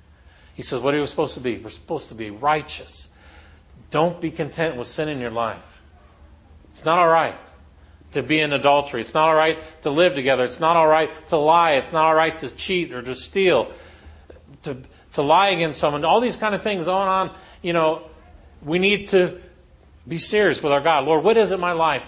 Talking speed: 210 wpm